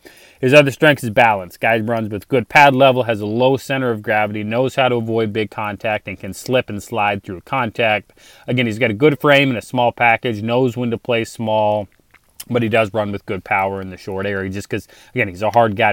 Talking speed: 235 wpm